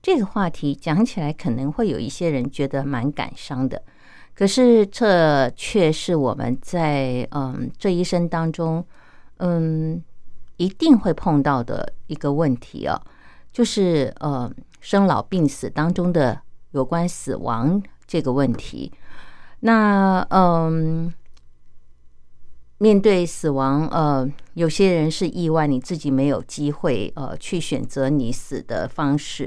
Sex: female